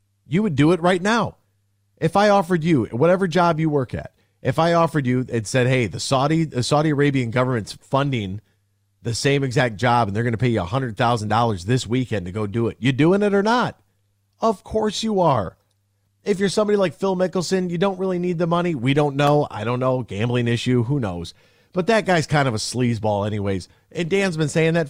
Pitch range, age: 110-175 Hz, 40-59